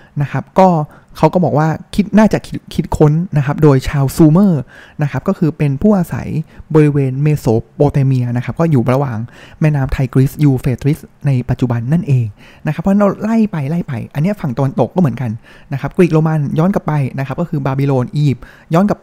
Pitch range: 130-170 Hz